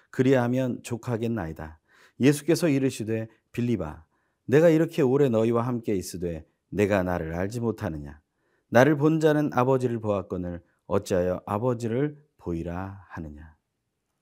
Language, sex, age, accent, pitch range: Korean, male, 40-59, native, 95-130 Hz